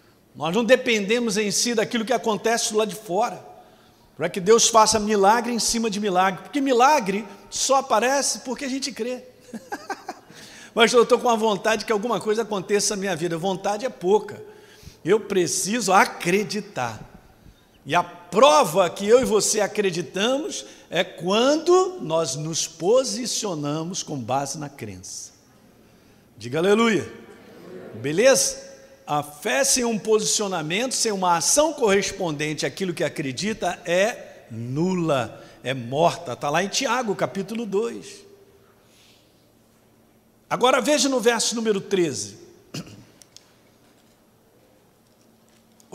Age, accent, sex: 50-69, Brazilian, male